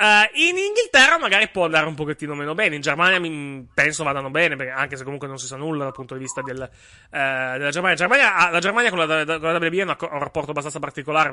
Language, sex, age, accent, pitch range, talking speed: Italian, male, 30-49, native, 145-200 Hz, 235 wpm